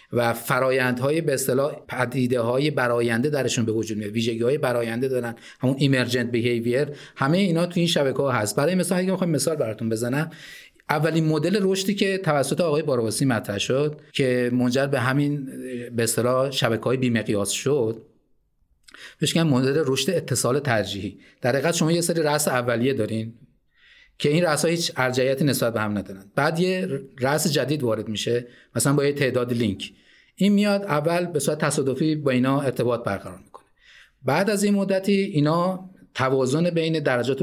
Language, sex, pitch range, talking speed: Persian, male, 120-170 Hz, 165 wpm